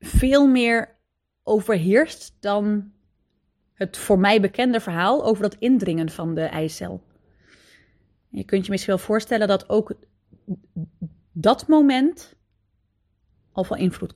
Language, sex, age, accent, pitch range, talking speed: Dutch, female, 30-49, Dutch, 165-230 Hz, 120 wpm